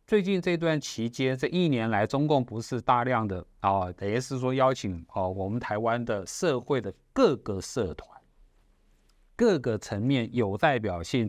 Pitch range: 110-150 Hz